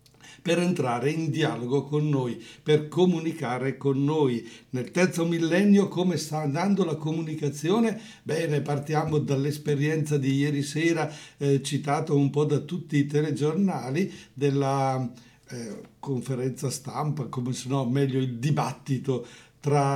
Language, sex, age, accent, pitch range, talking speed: English, male, 60-79, Italian, 135-155 Hz, 130 wpm